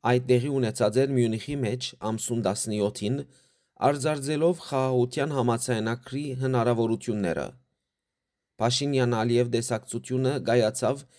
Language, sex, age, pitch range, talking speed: English, male, 30-49, 115-135 Hz, 75 wpm